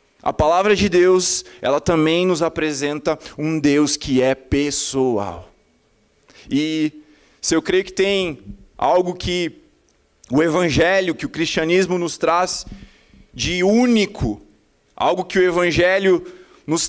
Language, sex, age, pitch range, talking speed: Portuguese, male, 20-39, 160-215 Hz, 125 wpm